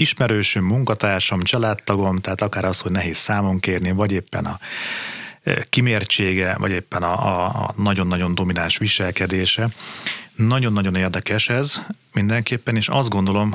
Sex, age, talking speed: male, 30-49, 125 wpm